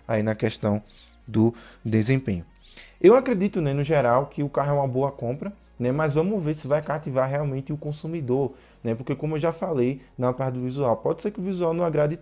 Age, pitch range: 20-39, 120-150 Hz